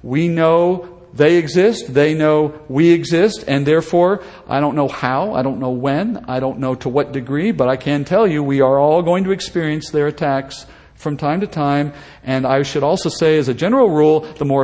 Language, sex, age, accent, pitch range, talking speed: English, male, 50-69, American, 140-180 Hz, 215 wpm